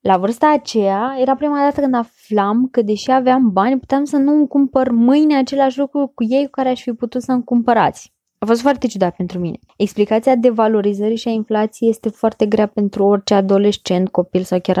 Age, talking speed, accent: 20-39, 205 wpm, native